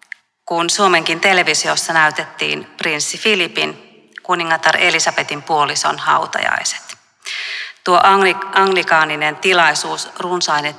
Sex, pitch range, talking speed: female, 150-195 Hz, 80 wpm